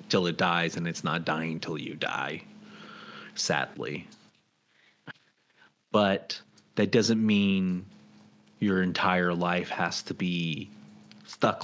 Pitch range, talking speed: 90-115 Hz, 115 wpm